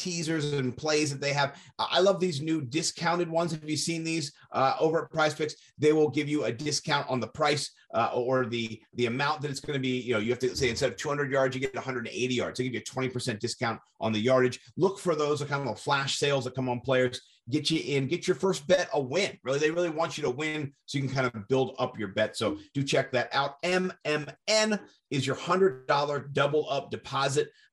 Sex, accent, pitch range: male, American, 130-170 Hz